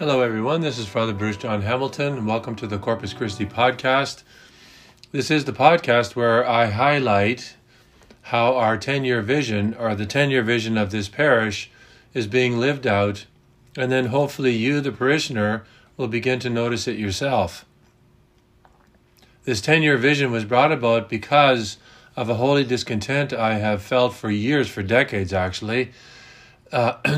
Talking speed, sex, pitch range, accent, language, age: 150 wpm, male, 110-130 Hz, American, English, 40-59